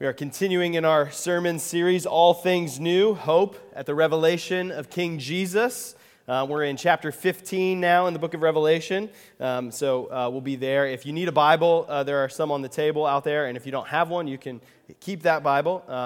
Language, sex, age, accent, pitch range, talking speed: English, male, 20-39, American, 125-170 Hz, 220 wpm